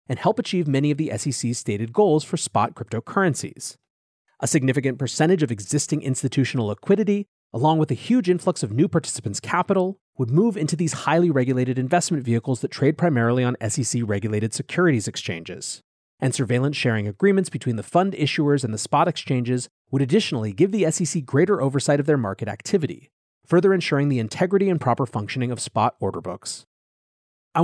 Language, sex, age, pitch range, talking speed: English, male, 30-49, 125-165 Hz, 165 wpm